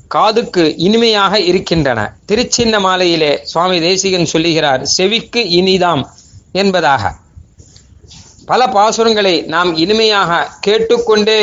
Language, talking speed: Tamil, 85 wpm